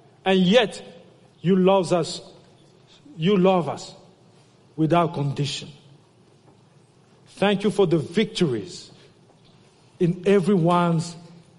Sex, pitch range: male, 140-180 Hz